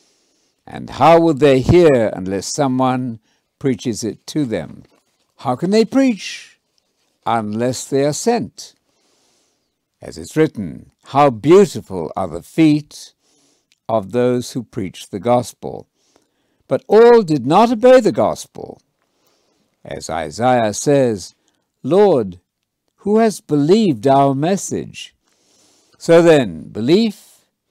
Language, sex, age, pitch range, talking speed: English, male, 60-79, 115-160 Hz, 115 wpm